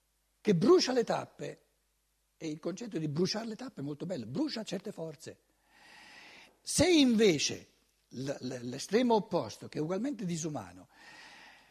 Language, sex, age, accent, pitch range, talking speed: Italian, male, 60-79, native, 160-230 Hz, 130 wpm